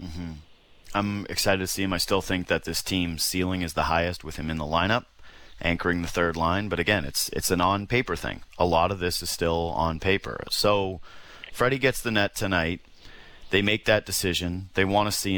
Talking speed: 215 wpm